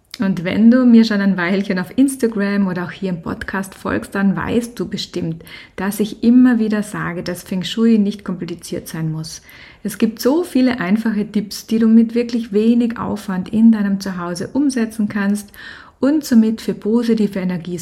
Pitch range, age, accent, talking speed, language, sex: 180-225 Hz, 30-49, German, 180 wpm, German, female